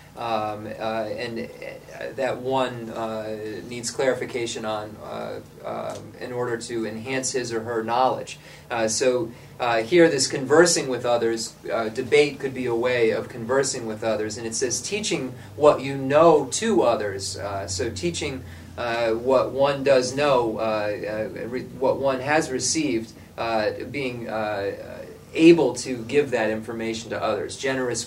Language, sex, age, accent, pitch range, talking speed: English, male, 30-49, American, 110-130 Hz, 150 wpm